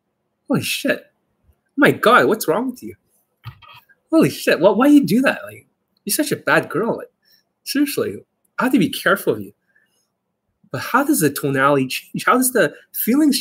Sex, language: male, English